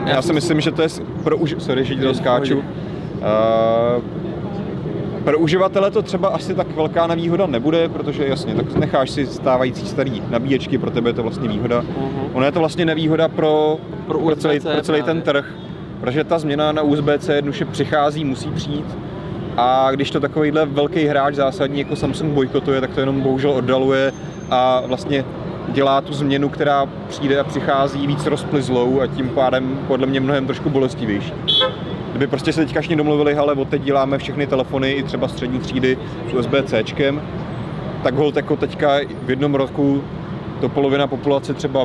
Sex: male